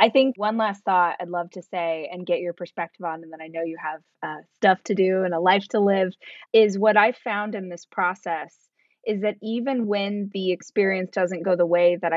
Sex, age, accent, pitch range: female, 20-39, American, 180-215 Hz